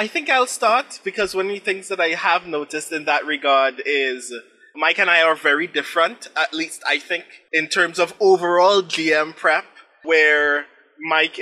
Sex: male